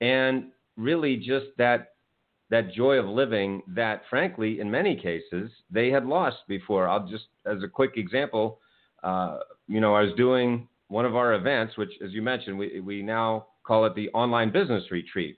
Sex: male